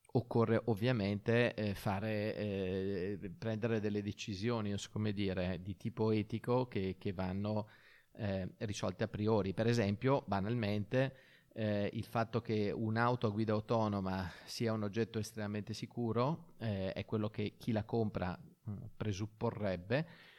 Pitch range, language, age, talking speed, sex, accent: 100-115 Hz, Italian, 30-49, 135 wpm, male, native